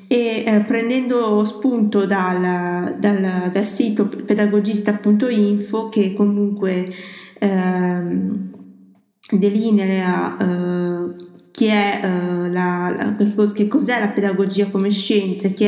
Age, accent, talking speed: 20-39, native, 105 wpm